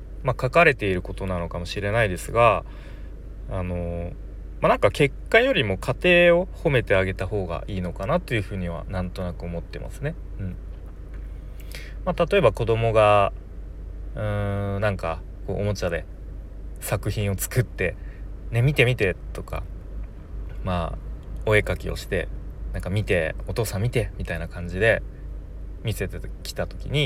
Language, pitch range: Japanese, 80-120 Hz